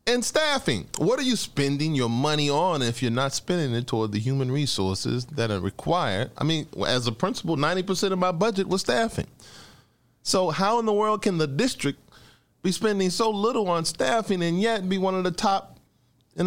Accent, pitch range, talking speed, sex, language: American, 110-150 Hz, 195 wpm, male, English